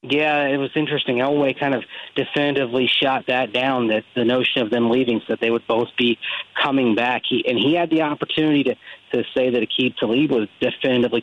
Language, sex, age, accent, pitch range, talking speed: English, male, 40-59, American, 125-145 Hz, 210 wpm